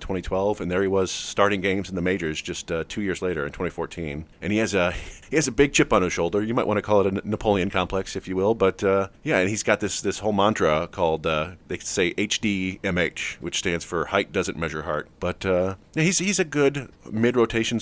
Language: English